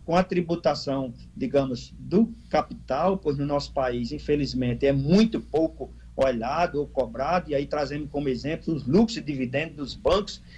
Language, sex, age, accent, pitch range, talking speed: Portuguese, male, 50-69, Brazilian, 130-180 Hz, 160 wpm